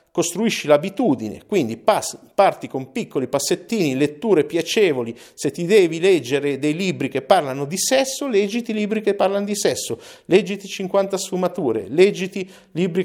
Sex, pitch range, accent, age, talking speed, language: male, 135-200 Hz, native, 50-69, 140 wpm, Italian